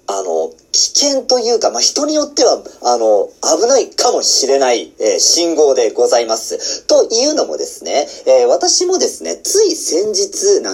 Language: Japanese